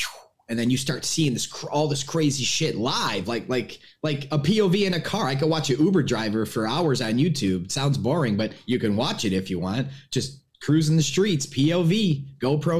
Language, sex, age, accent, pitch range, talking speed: English, male, 20-39, American, 125-160 Hz, 215 wpm